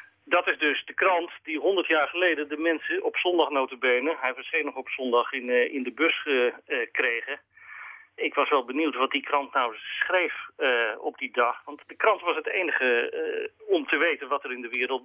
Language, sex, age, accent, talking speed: Dutch, male, 40-59, Dutch, 195 wpm